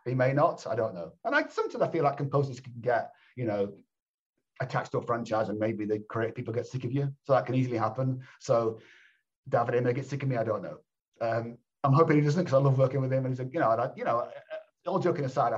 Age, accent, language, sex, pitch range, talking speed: 40-59, British, English, male, 115-140 Hz, 260 wpm